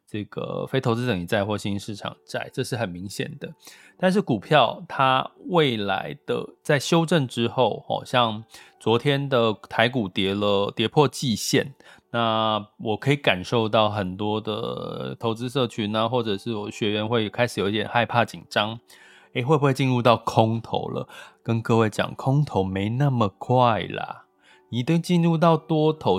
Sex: male